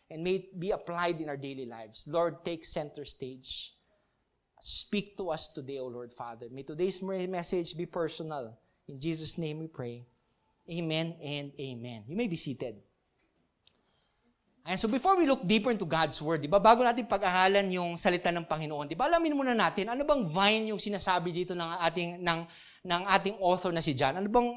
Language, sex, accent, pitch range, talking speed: English, male, Filipino, 160-210 Hz, 190 wpm